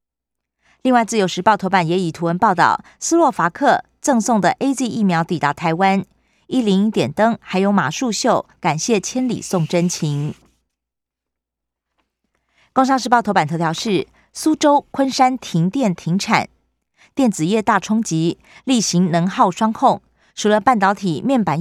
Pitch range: 165-235 Hz